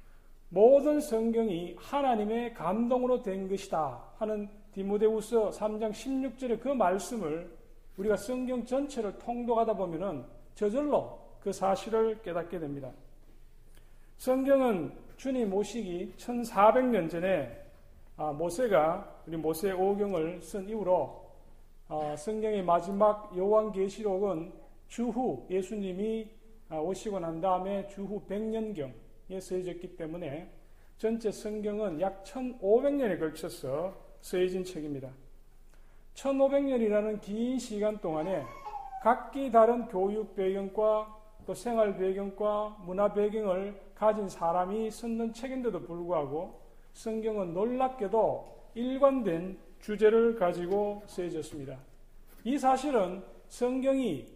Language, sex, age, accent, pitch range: Korean, male, 40-59, native, 185-230 Hz